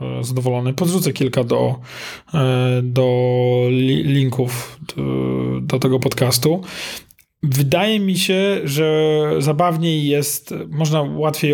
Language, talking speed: Polish, 95 wpm